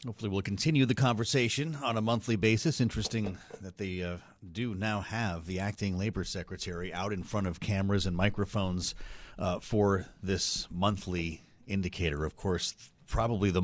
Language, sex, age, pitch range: English, male, 40-59, 95-125 Hz